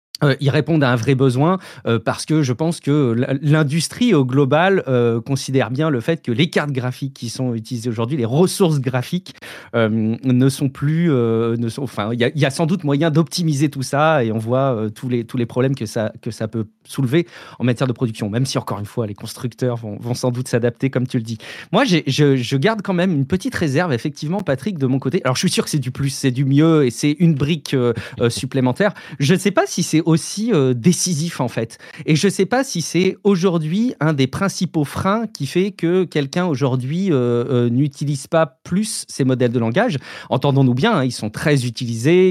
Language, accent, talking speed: French, French, 230 wpm